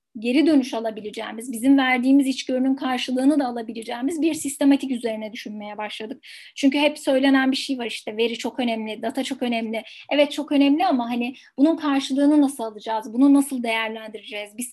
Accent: native